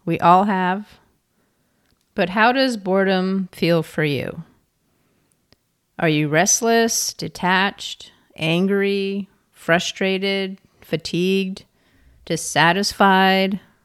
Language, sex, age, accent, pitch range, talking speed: English, female, 40-59, American, 160-200 Hz, 80 wpm